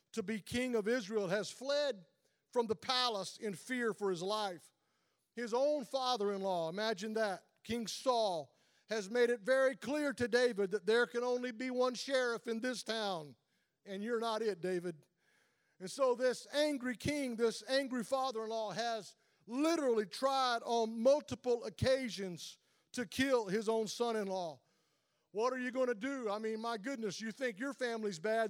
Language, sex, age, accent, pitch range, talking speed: English, male, 50-69, American, 215-260 Hz, 165 wpm